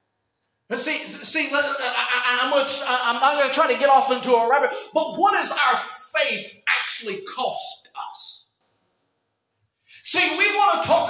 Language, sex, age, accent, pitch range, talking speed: English, male, 40-59, American, 240-305 Hz, 170 wpm